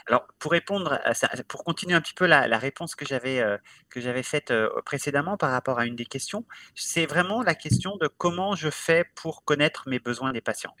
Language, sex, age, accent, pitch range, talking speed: French, male, 30-49, French, 120-170 Hz, 230 wpm